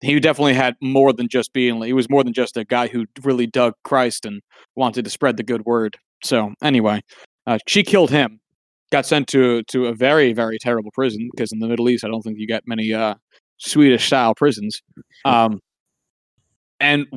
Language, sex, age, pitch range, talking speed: English, male, 30-49, 120-150 Hz, 200 wpm